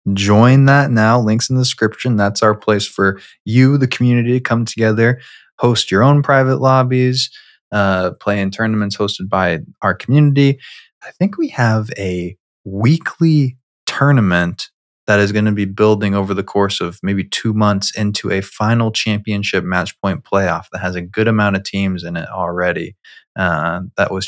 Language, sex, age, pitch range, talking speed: English, male, 20-39, 95-125 Hz, 175 wpm